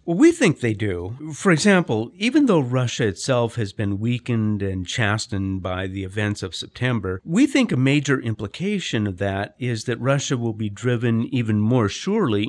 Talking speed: 180 wpm